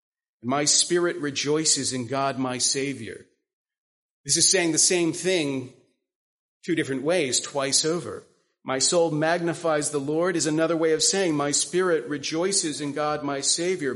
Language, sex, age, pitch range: English, male, 40-59, 135-175 Hz